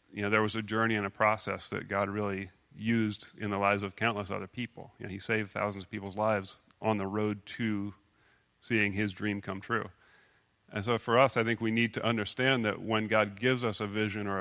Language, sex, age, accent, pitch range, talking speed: English, male, 40-59, American, 100-110 Hz, 230 wpm